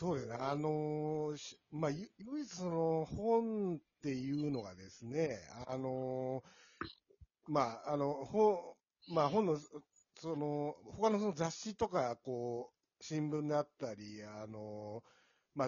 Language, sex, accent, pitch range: Japanese, male, native, 120-185 Hz